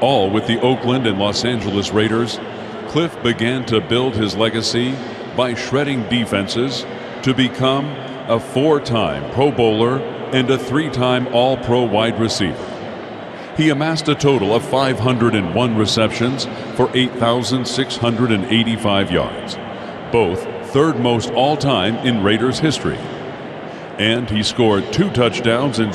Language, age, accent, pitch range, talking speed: English, 50-69, American, 115-135 Hz, 120 wpm